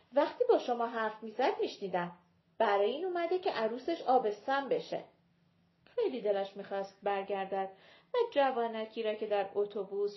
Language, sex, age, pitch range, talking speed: Persian, female, 40-59, 195-260 Hz, 135 wpm